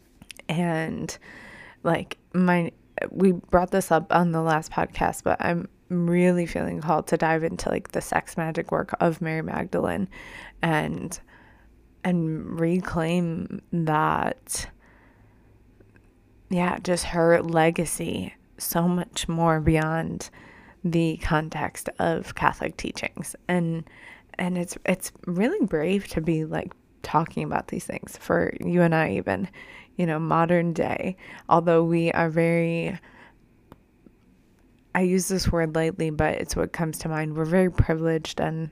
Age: 20-39